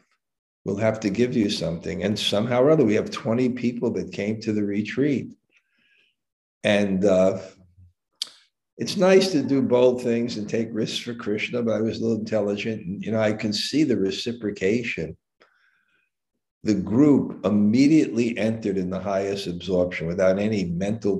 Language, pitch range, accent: English, 95-115 Hz, American